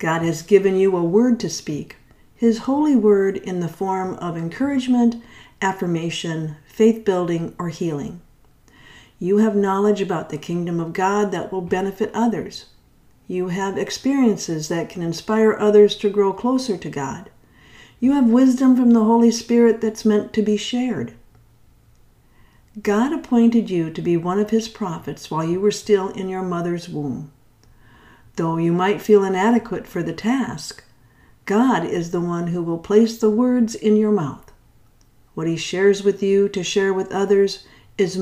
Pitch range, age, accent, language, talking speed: 165-220 Hz, 50-69, American, English, 160 wpm